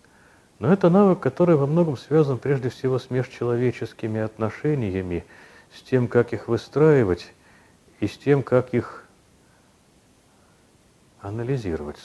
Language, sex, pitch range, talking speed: Russian, male, 95-140 Hz, 115 wpm